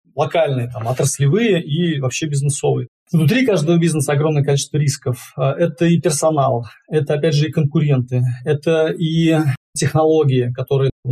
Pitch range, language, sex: 130-165 Hz, Russian, male